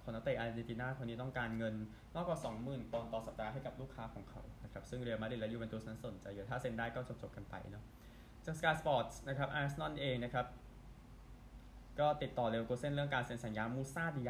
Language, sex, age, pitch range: Thai, male, 20-39, 115-135 Hz